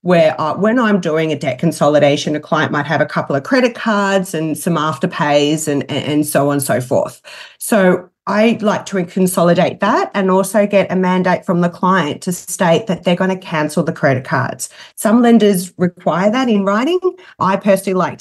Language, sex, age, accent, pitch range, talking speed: English, female, 30-49, Australian, 165-205 Hz, 200 wpm